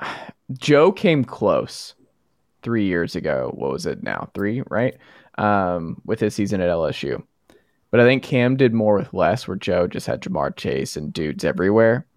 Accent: American